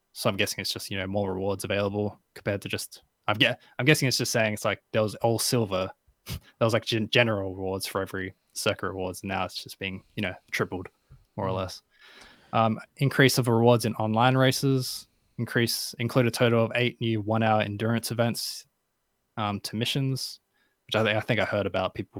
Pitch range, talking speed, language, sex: 100-120 Hz, 205 wpm, English, male